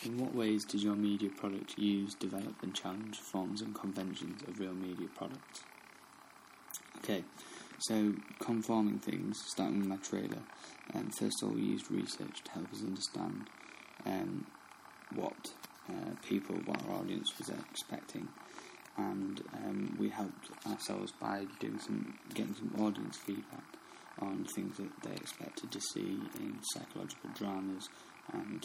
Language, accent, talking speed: English, British, 145 wpm